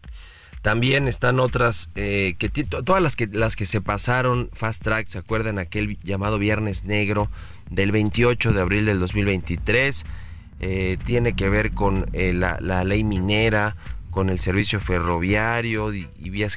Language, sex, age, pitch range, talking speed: Spanish, male, 30-49, 90-115 Hz, 160 wpm